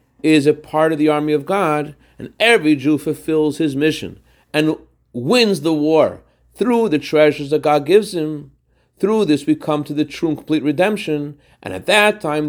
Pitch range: 145-160 Hz